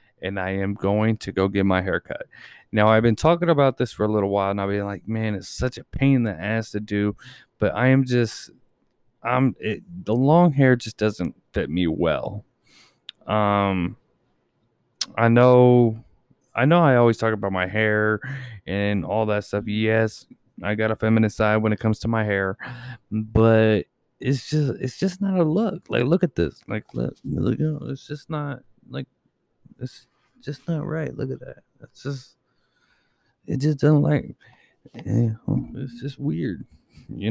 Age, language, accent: 20-39, English, American